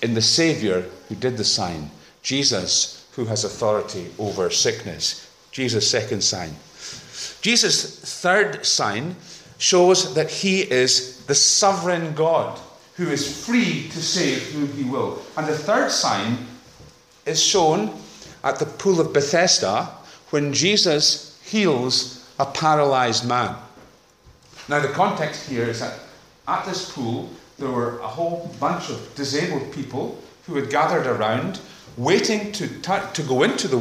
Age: 50-69